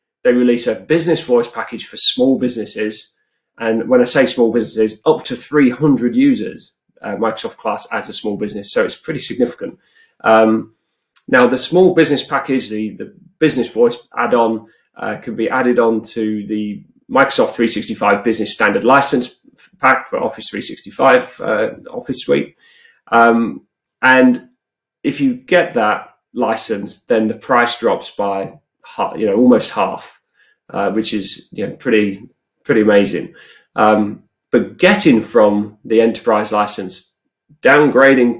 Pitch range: 105-130 Hz